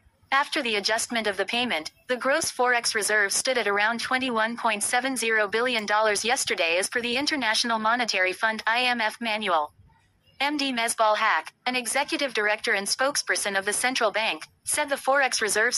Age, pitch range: 30-49, 215-250 Hz